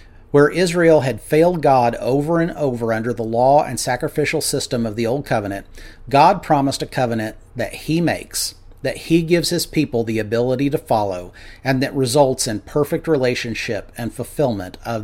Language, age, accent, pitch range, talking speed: English, 40-59, American, 105-145 Hz, 170 wpm